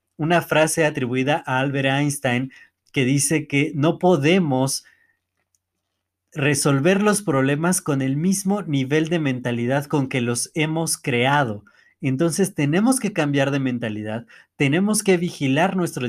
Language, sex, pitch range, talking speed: Spanish, male, 130-165 Hz, 130 wpm